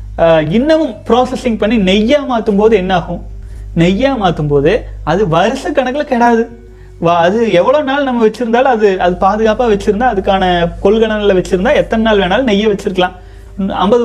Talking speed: 130 wpm